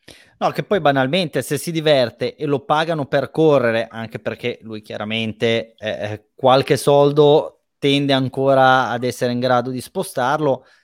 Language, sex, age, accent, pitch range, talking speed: Italian, male, 20-39, native, 120-150 Hz, 150 wpm